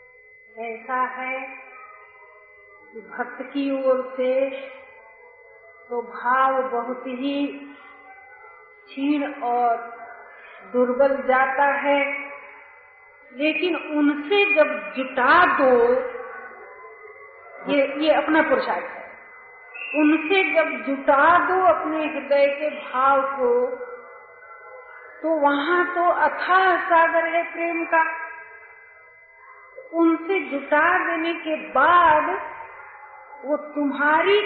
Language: Hindi